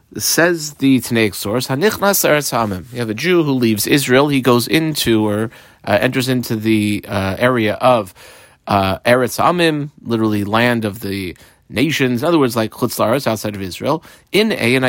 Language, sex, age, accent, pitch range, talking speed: English, male, 30-49, American, 110-145 Hz, 165 wpm